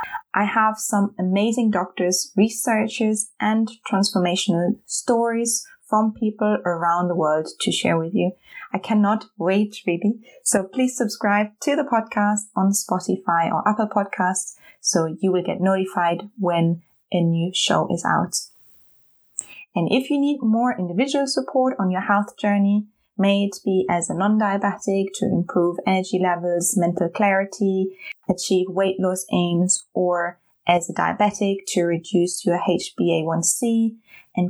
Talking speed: 140 wpm